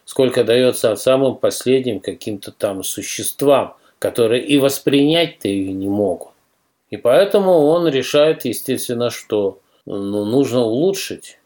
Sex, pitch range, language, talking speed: male, 100-135 Hz, Russian, 120 wpm